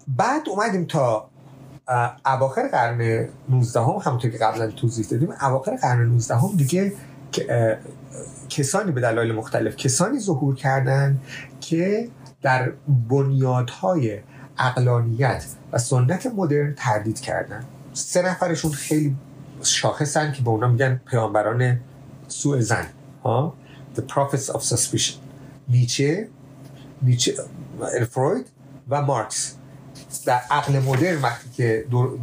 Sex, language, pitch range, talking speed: male, Persian, 125-150 Hz, 105 wpm